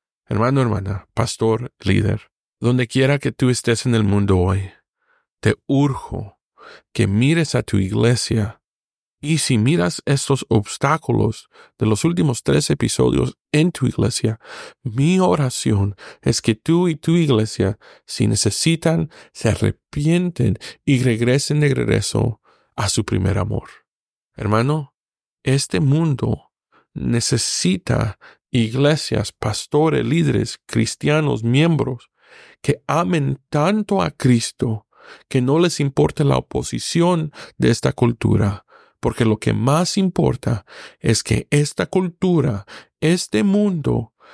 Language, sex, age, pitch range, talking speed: Spanish, male, 40-59, 110-150 Hz, 120 wpm